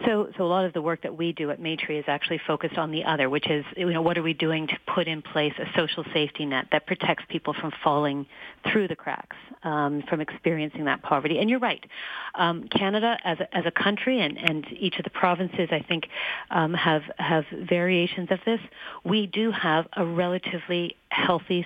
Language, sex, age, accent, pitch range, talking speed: English, female, 40-59, American, 165-190 Hz, 215 wpm